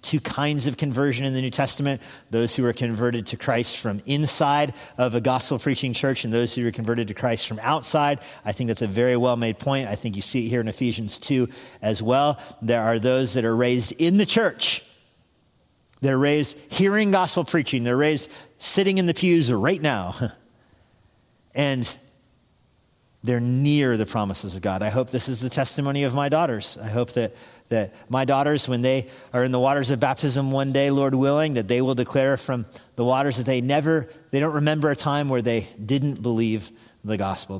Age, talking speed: 40-59, 200 wpm